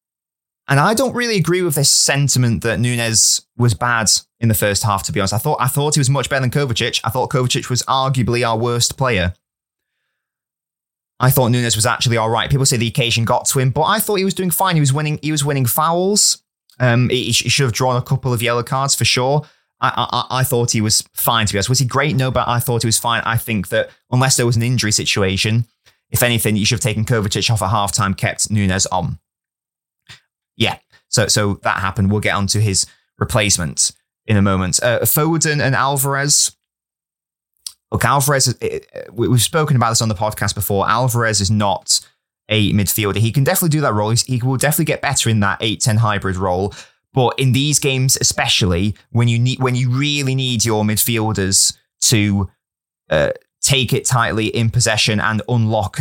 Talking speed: 210 wpm